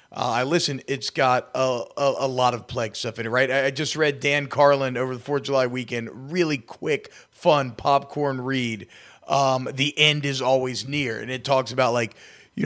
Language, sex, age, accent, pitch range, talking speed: English, male, 30-49, American, 130-160 Hz, 210 wpm